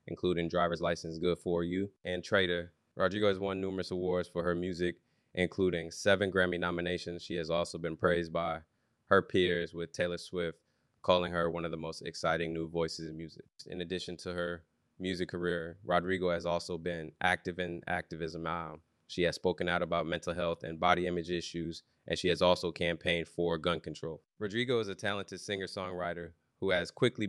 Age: 20-39